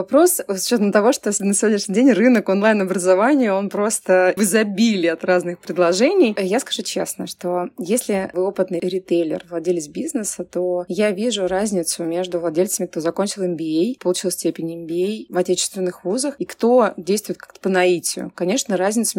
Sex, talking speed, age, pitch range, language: female, 155 wpm, 20-39, 180-225 Hz, Russian